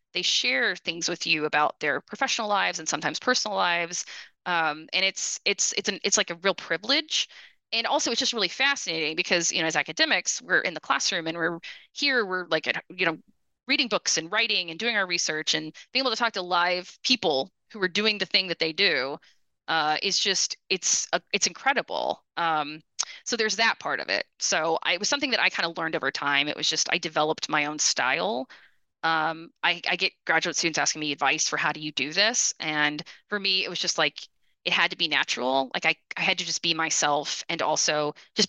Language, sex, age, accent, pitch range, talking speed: English, female, 20-39, American, 155-200 Hz, 220 wpm